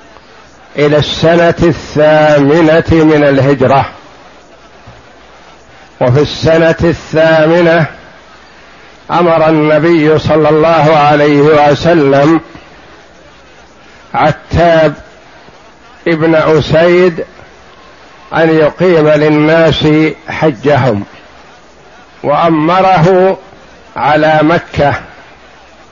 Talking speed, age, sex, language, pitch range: 55 wpm, 60-79, male, Arabic, 155-180 Hz